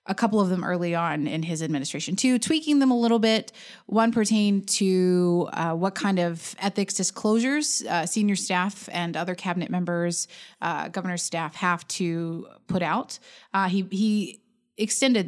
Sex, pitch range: female, 165-205 Hz